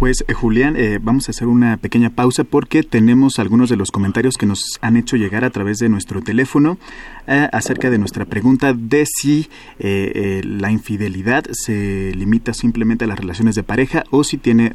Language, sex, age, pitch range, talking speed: Spanish, male, 30-49, 110-130 Hz, 195 wpm